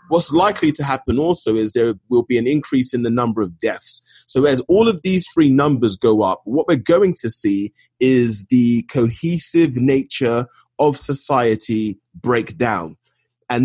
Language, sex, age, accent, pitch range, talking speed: English, male, 20-39, British, 120-165 Hz, 170 wpm